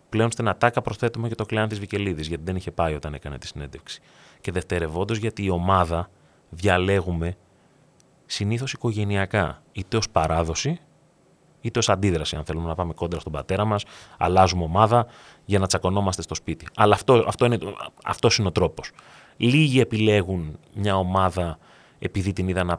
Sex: male